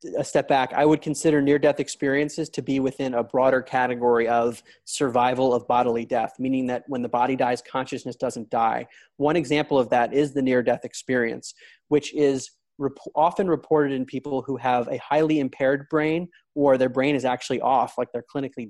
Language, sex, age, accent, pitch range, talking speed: English, male, 30-49, American, 125-145 Hz, 185 wpm